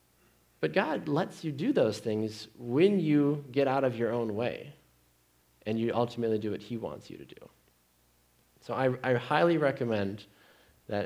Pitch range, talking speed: 90-130 Hz, 170 wpm